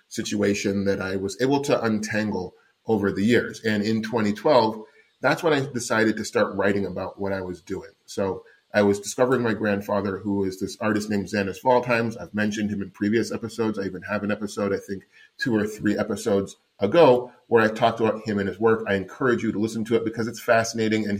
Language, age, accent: English, 30-49, American